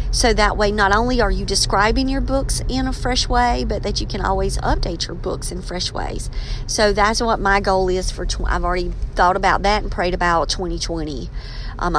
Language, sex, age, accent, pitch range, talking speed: English, female, 40-59, American, 140-215 Hz, 210 wpm